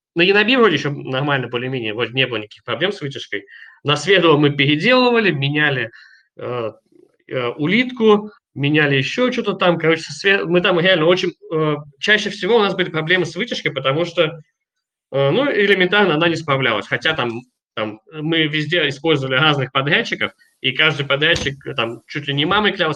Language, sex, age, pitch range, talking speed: Russian, male, 20-39, 140-190 Hz, 170 wpm